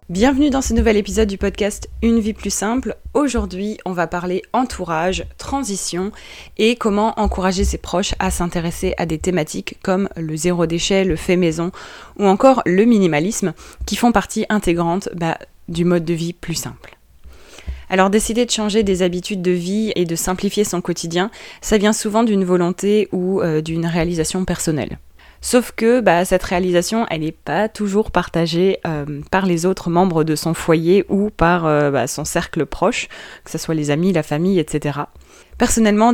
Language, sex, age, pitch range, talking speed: French, female, 20-39, 165-205 Hz, 175 wpm